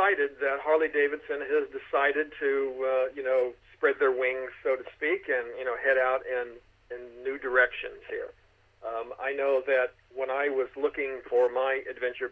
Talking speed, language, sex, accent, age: 170 wpm, English, male, American, 50-69